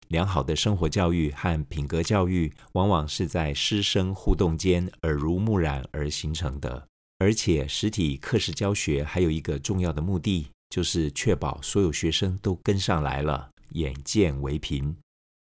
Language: Chinese